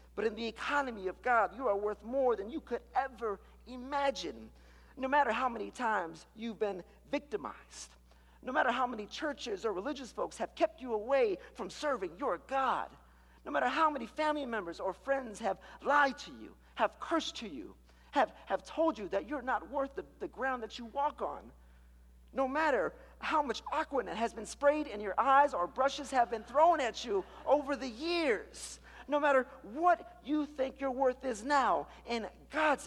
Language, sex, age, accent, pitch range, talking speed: English, male, 50-69, American, 175-280 Hz, 185 wpm